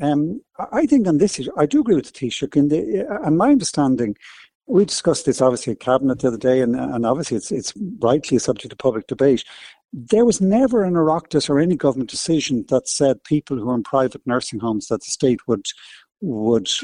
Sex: male